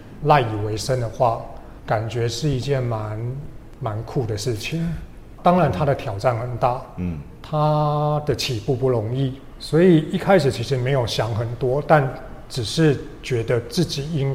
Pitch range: 115-145 Hz